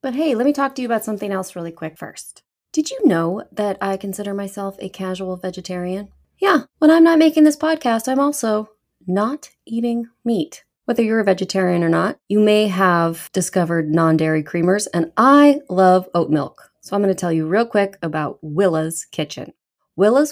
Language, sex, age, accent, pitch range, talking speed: English, female, 20-39, American, 175-235 Hz, 190 wpm